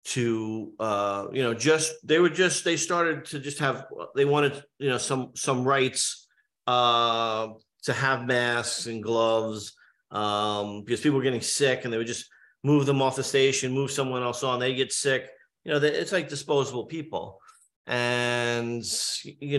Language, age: English, 40-59